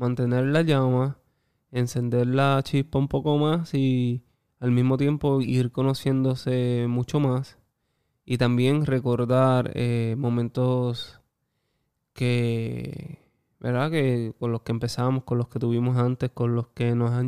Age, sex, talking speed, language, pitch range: 20-39, male, 135 wpm, Spanish, 120-130 Hz